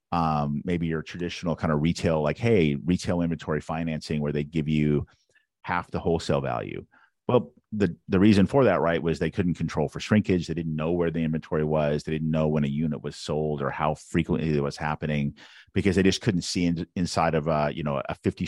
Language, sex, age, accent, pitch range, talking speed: English, male, 40-59, American, 75-95 Hz, 220 wpm